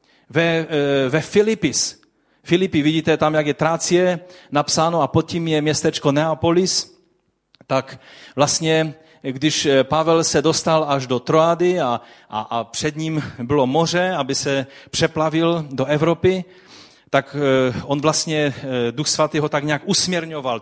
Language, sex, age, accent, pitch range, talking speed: Czech, male, 40-59, native, 125-160 Hz, 135 wpm